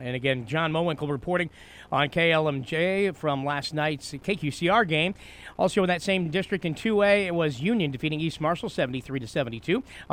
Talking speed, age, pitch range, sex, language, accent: 160 wpm, 40-59, 145-185 Hz, male, English, American